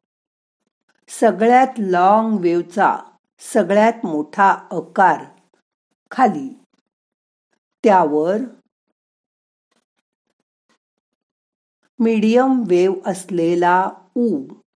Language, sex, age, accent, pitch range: Marathi, female, 50-69, native, 170-225 Hz